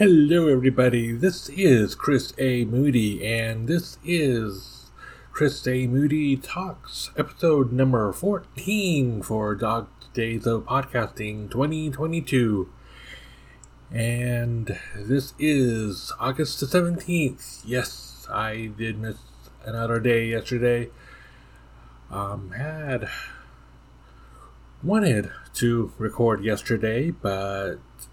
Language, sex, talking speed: English, male, 90 wpm